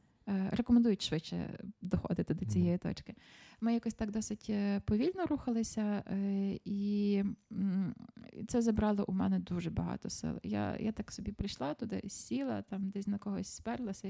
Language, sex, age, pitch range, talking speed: Ukrainian, female, 20-39, 205-245 Hz, 135 wpm